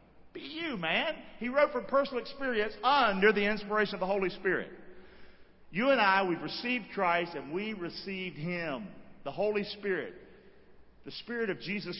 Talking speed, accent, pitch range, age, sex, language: 160 wpm, American, 175-235 Hz, 50-69, male, English